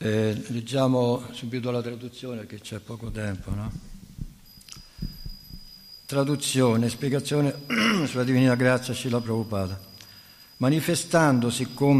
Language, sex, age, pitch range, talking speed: Italian, male, 60-79, 115-135 Hz, 100 wpm